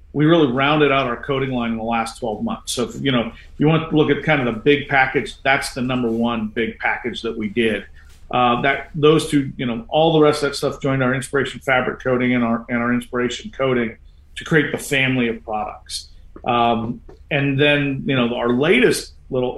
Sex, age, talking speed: male, 50-69, 225 wpm